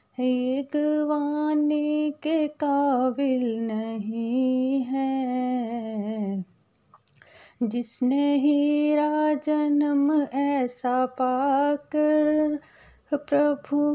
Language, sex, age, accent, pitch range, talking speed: Hindi, female, 30-49, native, 235-295 Hz, 50 wpm